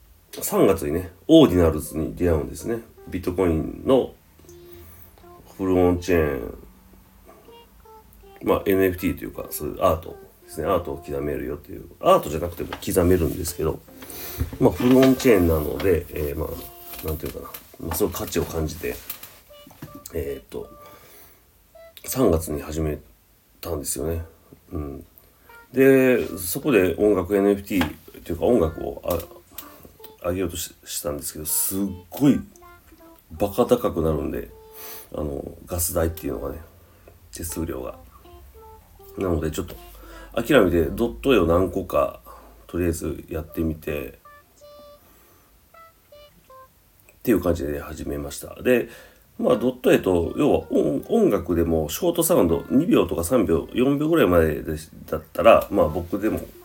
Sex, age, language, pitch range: male, 40-59, Japanese, 80-105 Hz